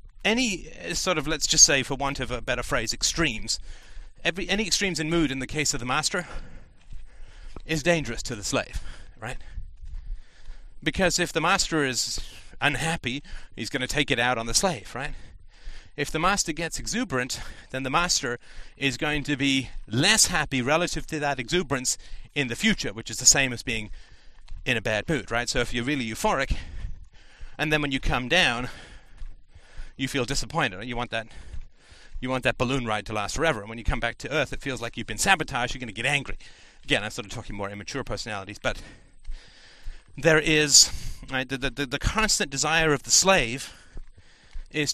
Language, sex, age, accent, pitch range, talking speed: English, male, 30-49, British, 110-155 Hz, 190 wpm